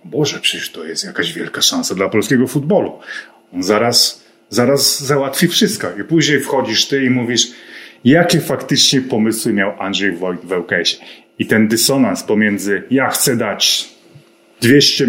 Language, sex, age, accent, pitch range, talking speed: Polish, male, 30-49, native, 110-140 Hz, 145 wpm